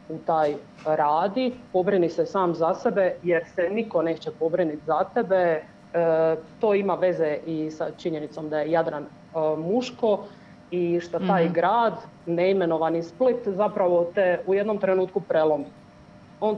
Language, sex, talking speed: Croatian, female, 140 wpm